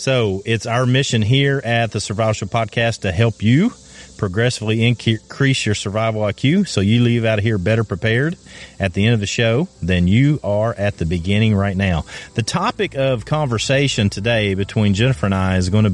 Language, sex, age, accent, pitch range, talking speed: English, male, 40-59, American, 95-115 Hz, 195 wpm